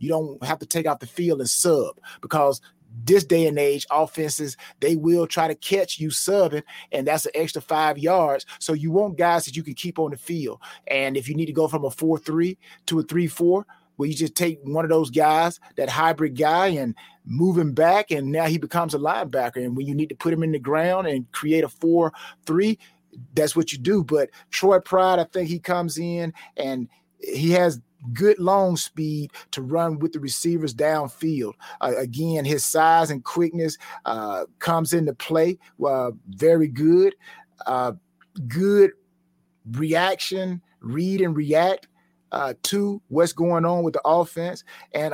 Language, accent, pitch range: English, American, 155-175 Hz